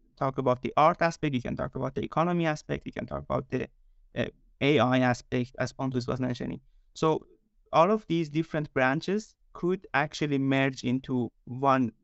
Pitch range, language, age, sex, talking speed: 125-145 Hz, English, 30-49, male, 175 wpm